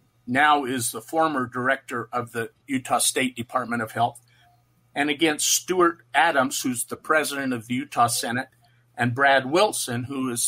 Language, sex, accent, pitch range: English, male, American, 120-140 Hz